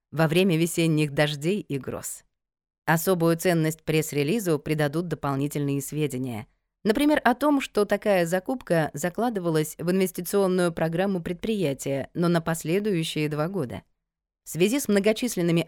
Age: 20-39